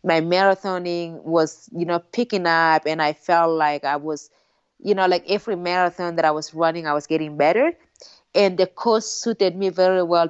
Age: 20-39